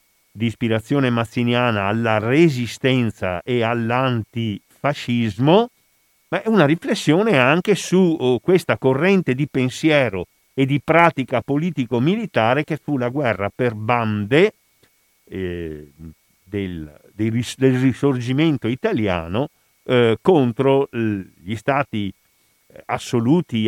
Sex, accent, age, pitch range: male, native, 50-69, 110-145 Hz